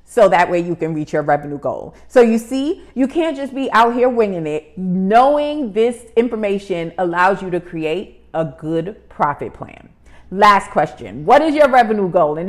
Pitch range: 175-245 Hz